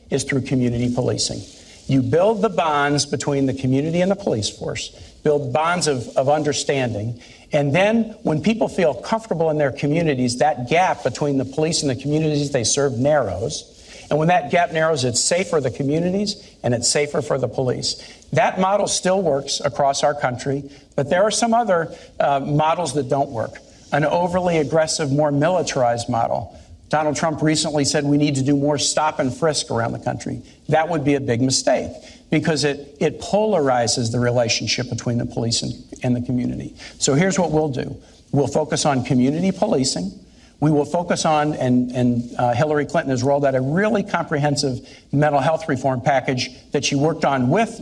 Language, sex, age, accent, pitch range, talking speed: English, male, 50-69, American, 130-160 Hz, 185 wpm